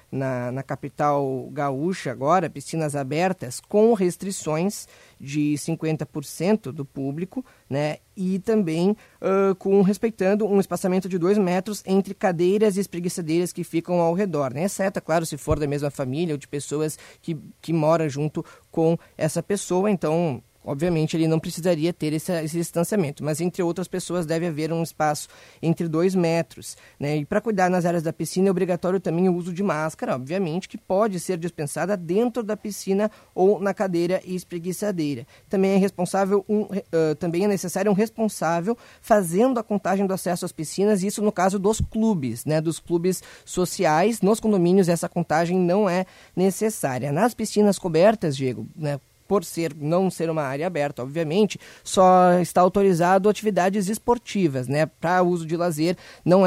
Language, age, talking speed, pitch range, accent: Portuguese, 20-39, 160 wpm, 160-195 Hz, Brazilian